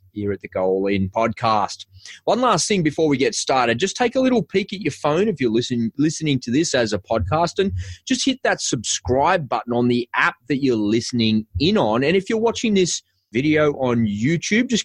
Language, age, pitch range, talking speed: English, 30-49, 105-160 Hz, 215 wpm